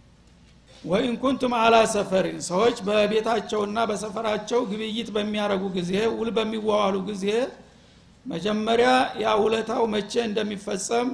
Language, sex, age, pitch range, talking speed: Amharic, male, 60-79, 205-235 Hz, 85 wpm